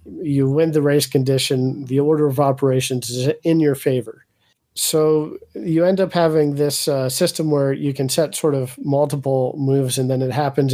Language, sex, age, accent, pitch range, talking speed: English, male, 40-59, American, 130-155 Hz, 185 wpm